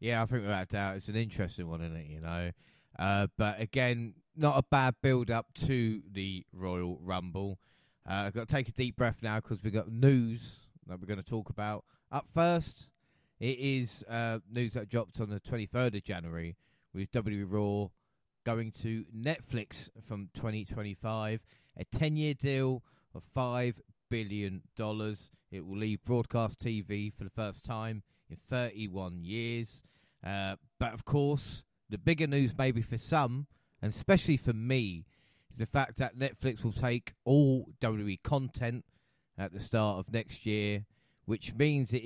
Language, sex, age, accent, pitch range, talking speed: English, male, 30-49, British, 105-125 Hz, 165 wpm